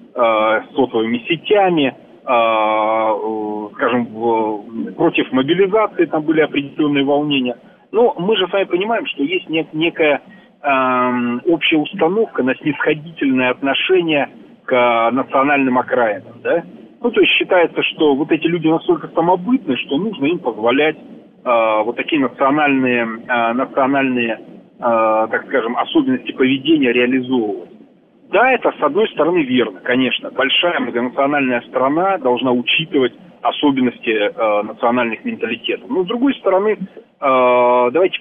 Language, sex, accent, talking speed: Russian, male, native, 110 wpm